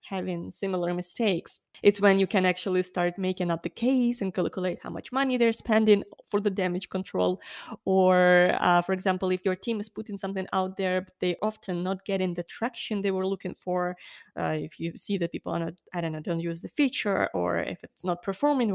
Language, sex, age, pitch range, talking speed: English, female, 20-39, 185-220 Hz, 210 wpm